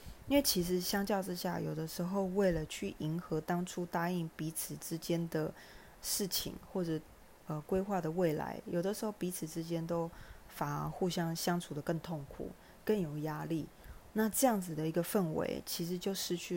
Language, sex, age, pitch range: Chinese, female, 20-39, 160-195 Hz